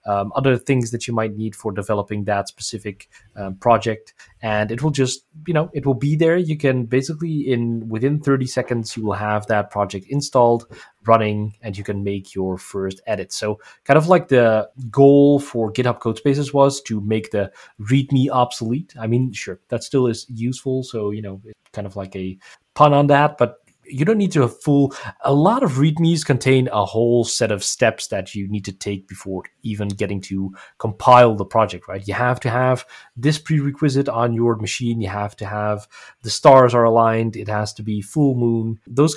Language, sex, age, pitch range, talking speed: English, male, 20-39, 105-135 Hz, 200 wpm